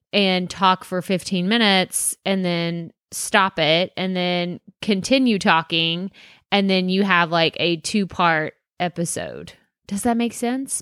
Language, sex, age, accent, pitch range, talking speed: English, female, 20-39, American, 175-215 Hz, 140 wpm